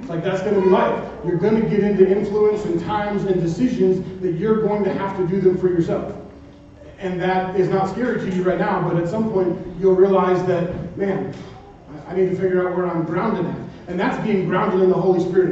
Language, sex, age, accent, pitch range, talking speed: English, male, 30-49, American, 175-195 Hz, 225 wpm